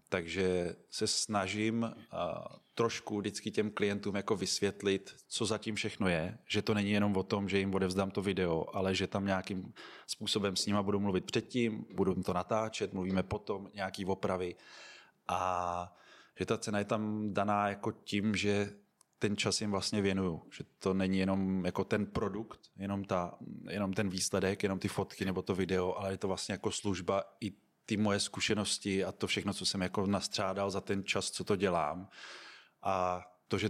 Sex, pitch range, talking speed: male, 95-105 Hz, 180 wpm